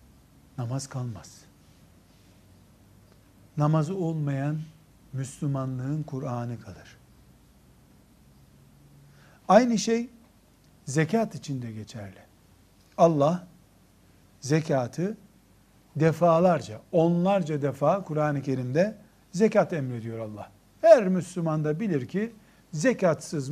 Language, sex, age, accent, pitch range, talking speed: Turkish, male, 60-79, native, 115-180 Hz, 70 wpm